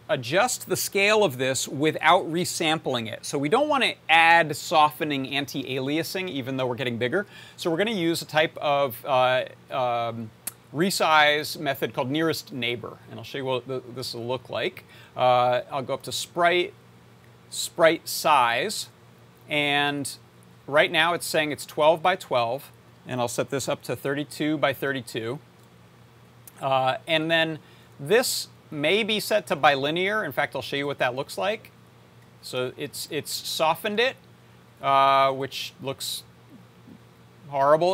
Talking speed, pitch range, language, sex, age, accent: 155 wpm, 125-160 Hz, English, male, 40-59, American